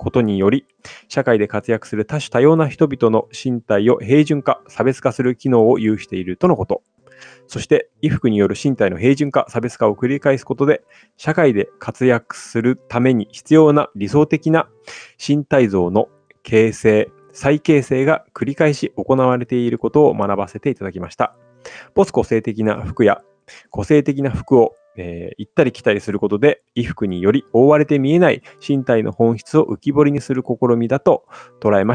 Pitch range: 105-140 Hz